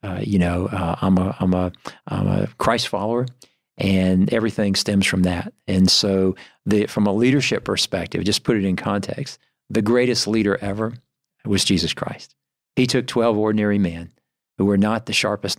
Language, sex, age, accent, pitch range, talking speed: English, male, 50-69, American, 95-115 Hz, 175 wpm